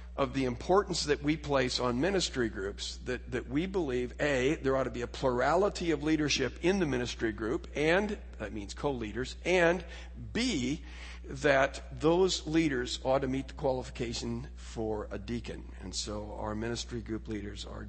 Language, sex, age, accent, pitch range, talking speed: English, male, 50-69, American, 110-150 Hz, 170 wpm